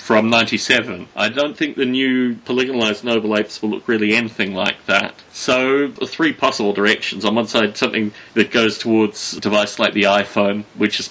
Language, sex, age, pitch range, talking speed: English, male, 30-49, 105-135 Hz, 190 wpm